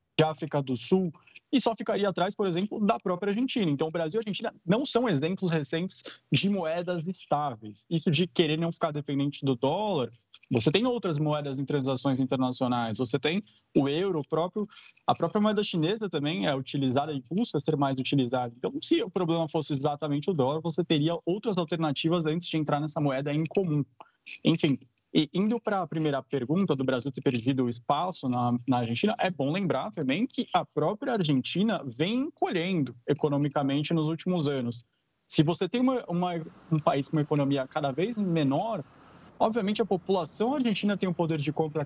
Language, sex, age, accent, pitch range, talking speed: Portuguese, male, 20-39, Brazilian, 145-195 Hz, 180 wpm